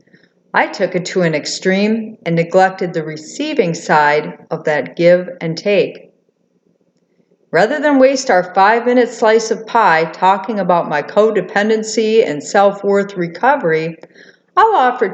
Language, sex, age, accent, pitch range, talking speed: English, female, 50-69, American, 175-235 Hz, 130 wpm